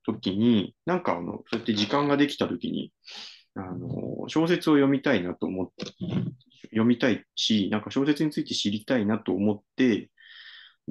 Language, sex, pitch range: Japanese, male, 95-130 Hz